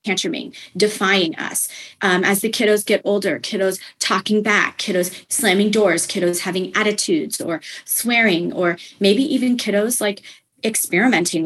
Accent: American